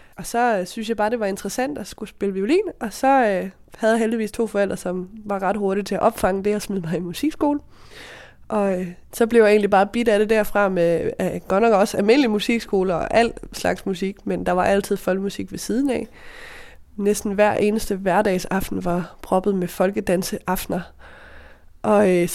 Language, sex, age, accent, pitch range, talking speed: Danish, female, 20-39, native, 185-230 Hz, 200 wpm